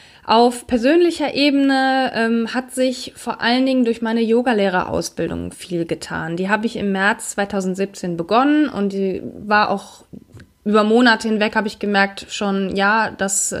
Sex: female